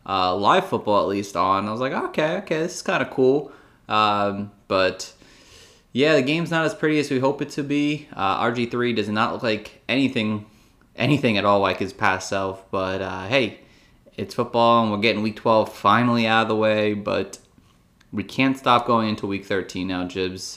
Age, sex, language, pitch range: 20-39, male, English, 105-130 Hz